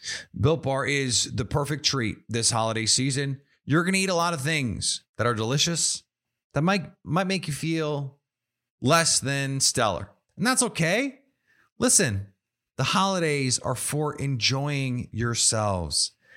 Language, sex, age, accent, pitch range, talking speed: English, male, 30-49, American, 100-145 Hz, 145 wpm